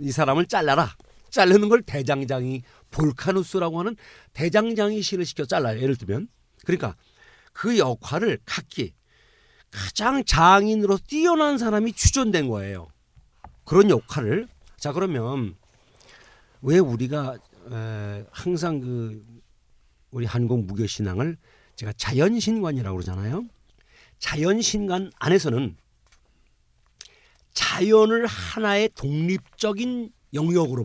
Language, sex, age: Korean, male, 50-69